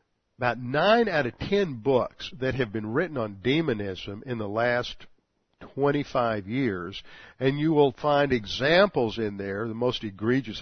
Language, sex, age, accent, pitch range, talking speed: English, male, 50-69, American, 110-140 Hz, 155 wpm